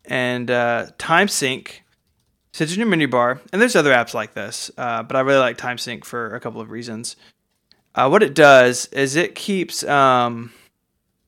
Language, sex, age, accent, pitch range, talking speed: English, male, 20-39, American, 120-145 Hz, 175 wpm